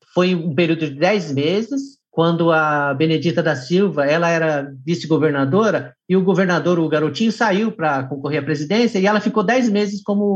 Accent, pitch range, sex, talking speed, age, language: Brazilian, 145-210 Hz, male, 175 wpm, 50-69, Portuguese